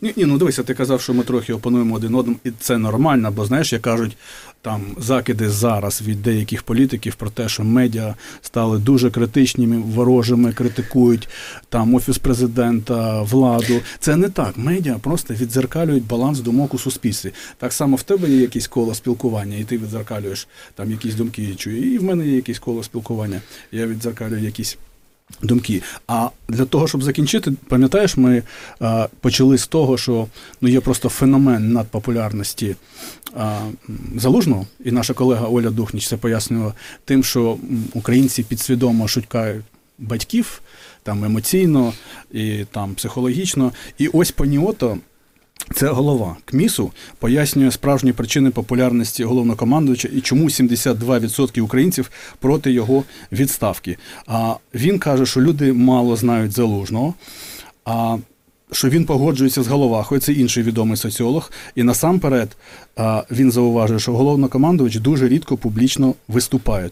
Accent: native